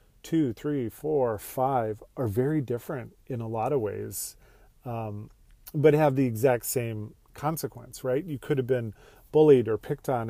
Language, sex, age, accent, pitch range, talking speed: English, male, 40-59, American, 110-140 Hz, 165 wpm